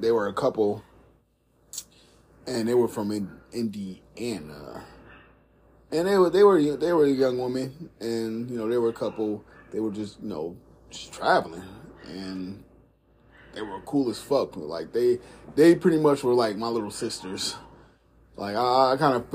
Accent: American